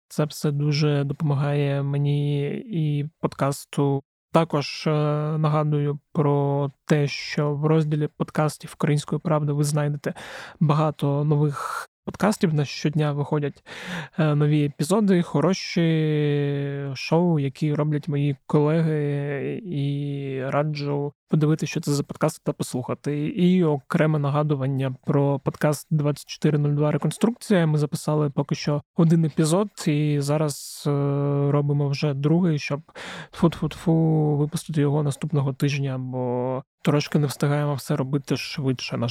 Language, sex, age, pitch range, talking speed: Ukrainian, male, 20-39, 145-155 Hz, 115 wpm